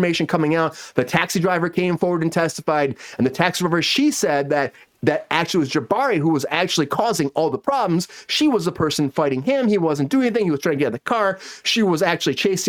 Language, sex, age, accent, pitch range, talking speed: English, male, 30-49, American, 145-200 Hz, 235 wpm